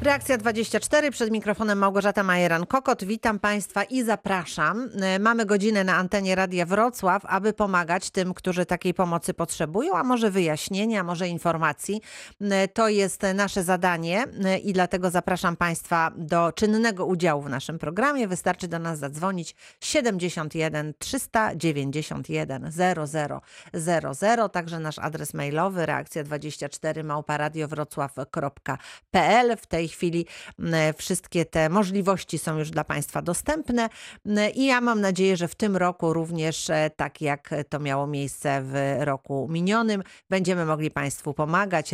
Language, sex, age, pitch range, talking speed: Polish, female, 40-59, 155-200 Hz, 125 wpm